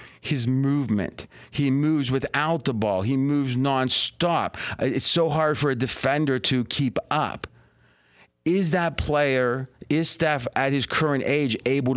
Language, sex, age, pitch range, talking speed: English, male, 40-59, 125-170 Hz, 145 wpm